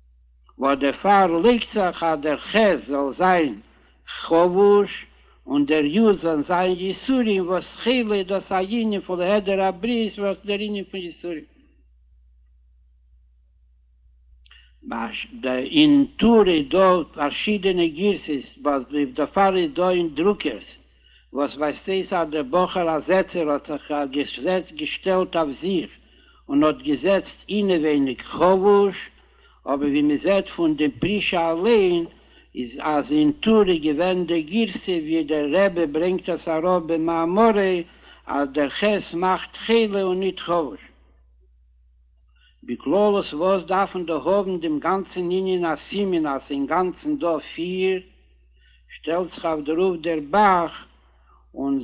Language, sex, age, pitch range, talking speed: Hebrew, male, 60-79, 145-195 Hz, 120 wpm